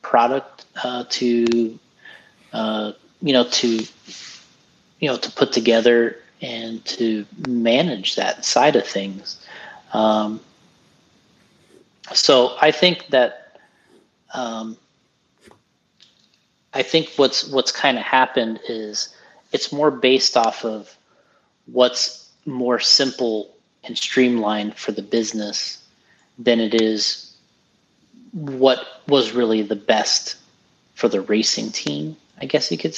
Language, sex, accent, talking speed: English, male, American, 115 wpm